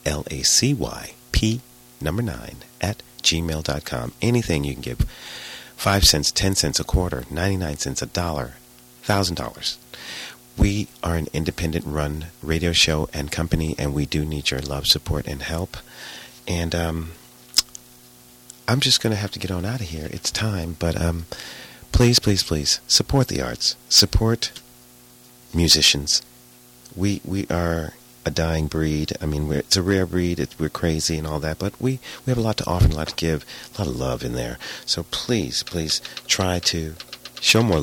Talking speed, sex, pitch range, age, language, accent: 165 wpm, male, 70-95 Hz, 40-59, English, American